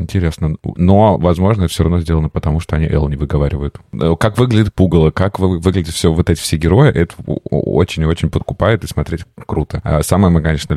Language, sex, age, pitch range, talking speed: Russian, male, 20-39, 80-95 Hz, 180 wpm